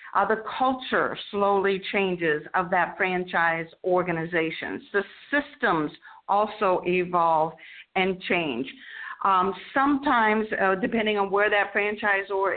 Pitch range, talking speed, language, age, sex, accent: 185-220 Hz, 110 wpm, English, 50-69, female, American